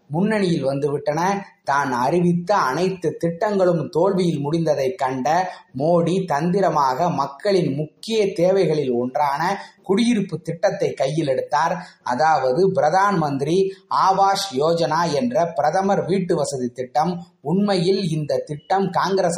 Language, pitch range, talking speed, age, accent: Tamil, 150-190 Hz, 95 wpm, 20-39, native